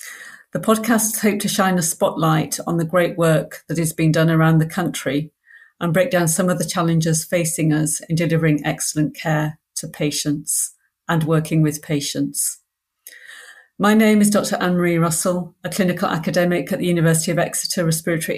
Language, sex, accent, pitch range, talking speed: English, female, British, 155-180 Hz, 170 wpm